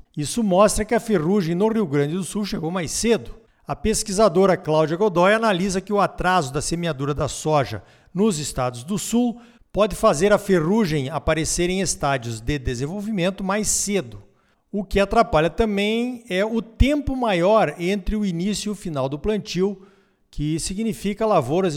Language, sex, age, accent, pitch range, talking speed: Portuguese, male, 50-69, Brazilian, 155-220 Hz, 165 wpm